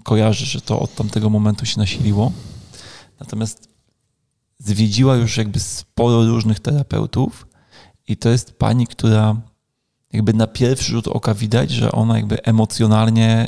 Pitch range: 110-125 Hz